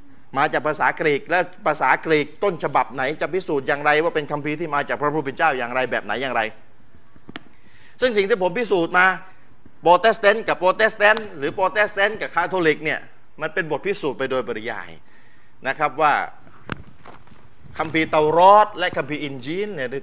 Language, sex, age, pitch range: Thai, male, 30-49, 135-180 Hz